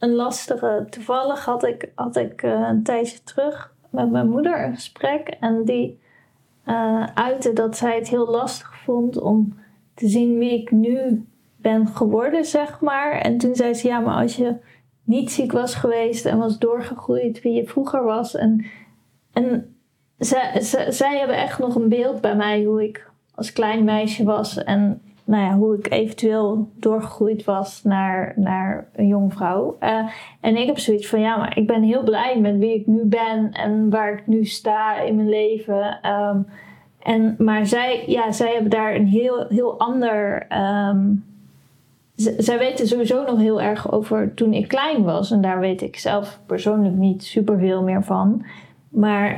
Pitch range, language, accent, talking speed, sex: 210-240 Hz, Dutch, Dutch, 175 wpm, female